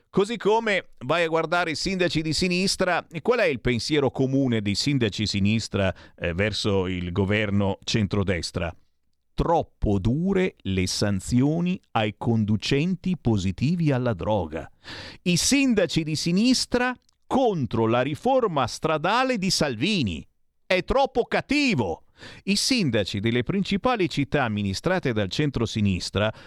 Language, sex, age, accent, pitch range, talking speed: Italian, male, 50-69, native, 105-170 Hz, 120 wpm